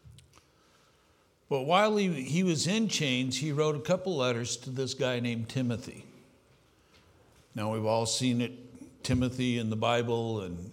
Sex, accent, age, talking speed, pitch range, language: male, American, 60-79, 150 wpm, 115-155 Hz, English